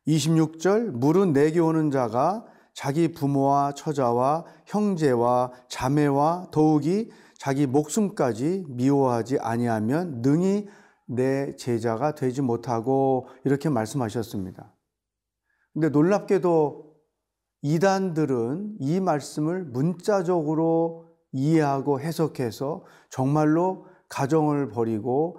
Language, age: Korean, 40-59